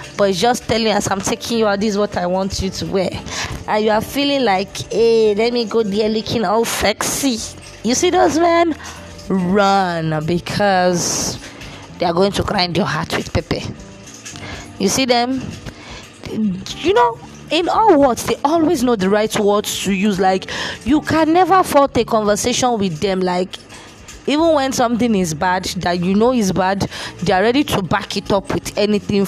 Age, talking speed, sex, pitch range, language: 20-39, 180 wpm, female, 190-250 Hz, English